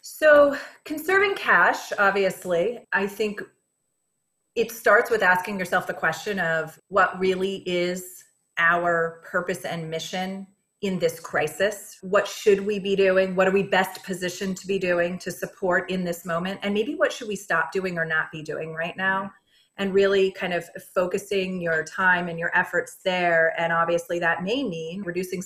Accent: American